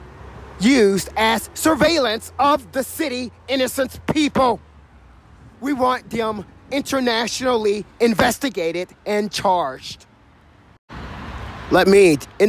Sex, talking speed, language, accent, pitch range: male, 85 wpm, English, American, 195-275 Hz